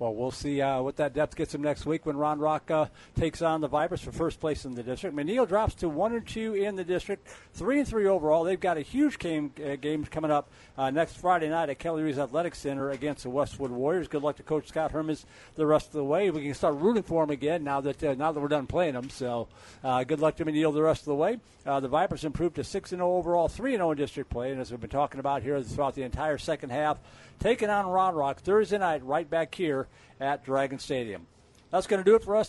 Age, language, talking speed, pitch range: 50-69, English, 255 wpm, 145-195 Hz